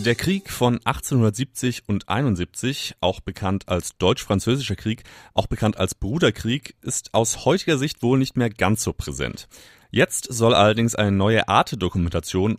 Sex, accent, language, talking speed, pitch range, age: male, German, German, 155 wpm, 95-120 Hz, 30-49